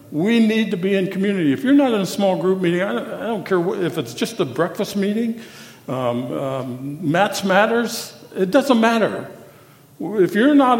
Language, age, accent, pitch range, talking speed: English, 60-79, American, 140-200 Hz, 190 wpm